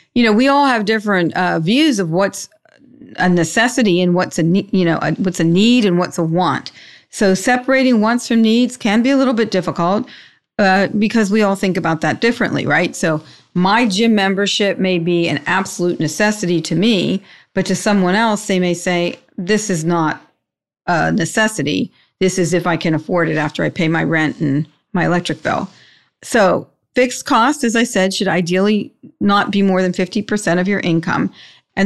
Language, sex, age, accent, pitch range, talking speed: English, female, 40-59, American, 180-215 Hz, 190 wpm